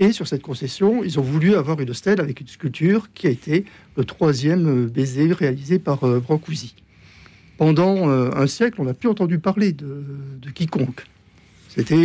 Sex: male